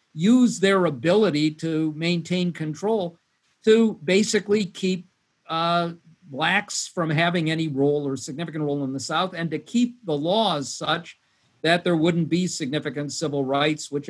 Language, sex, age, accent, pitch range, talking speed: English, male, 50-69, American, 150-180 Hz, 150 wpm